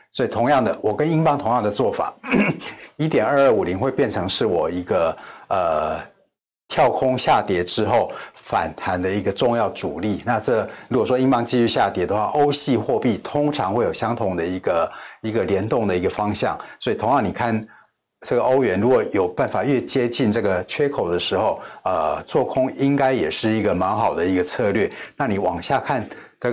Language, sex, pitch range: Chinese, male, 100-130 Hz